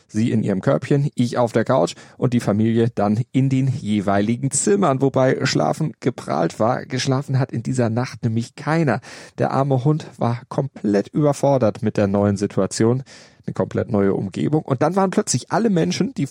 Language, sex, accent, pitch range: German, male, German, 110-145 Hz